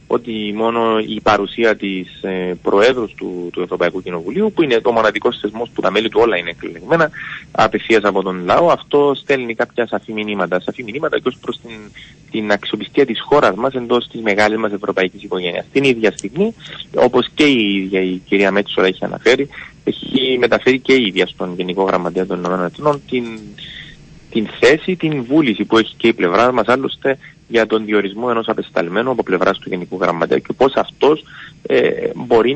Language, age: Greek, 30-49